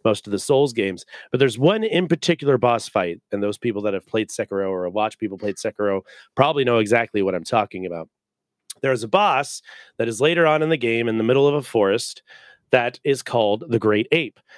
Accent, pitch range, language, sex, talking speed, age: American, 115-165 Hz, English, male, 220 wpm, 30-49